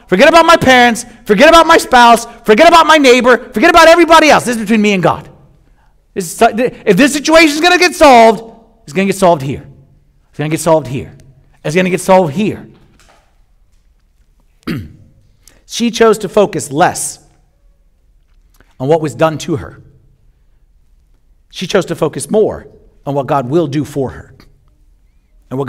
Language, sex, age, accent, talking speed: English, male, 50-69, American, 175 wpm